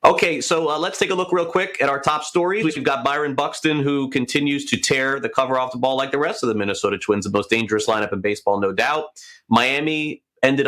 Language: English